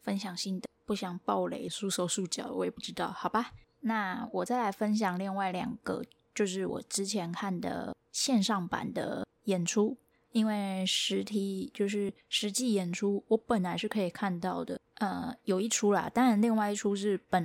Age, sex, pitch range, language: 10-29, female, 185-225 Hz, Chinese